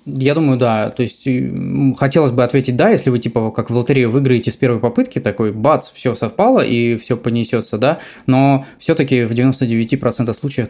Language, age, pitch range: Russian, 20-39, 120-140 Hz